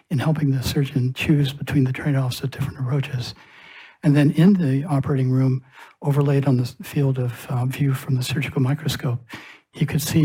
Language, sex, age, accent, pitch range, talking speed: English, male, 60-79, American, 130-150 Hz, 180 wpm